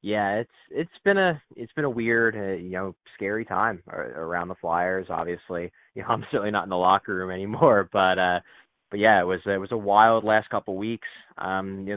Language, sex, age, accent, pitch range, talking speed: English, male, 20-39, American, 90-110 Hz, 225 wpm